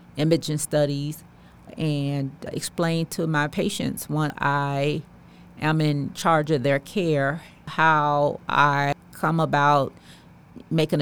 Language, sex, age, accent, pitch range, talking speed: English, female, 40-59, American, 145-165 Hz, 110 wpm